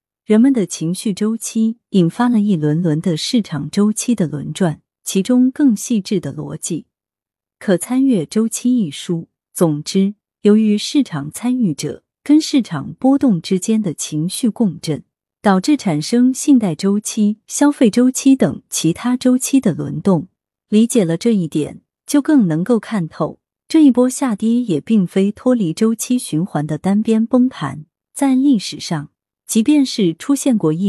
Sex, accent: female, native